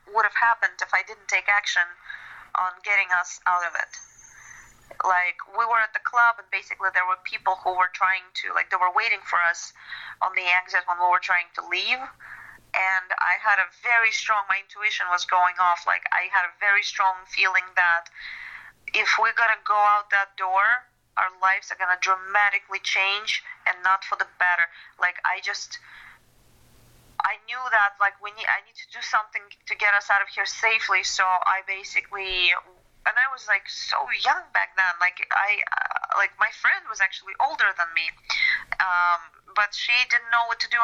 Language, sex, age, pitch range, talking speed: English, female, 30-49, 185-225 Hz, 195 wpm